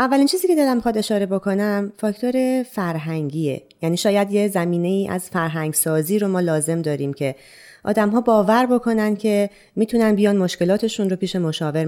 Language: Persian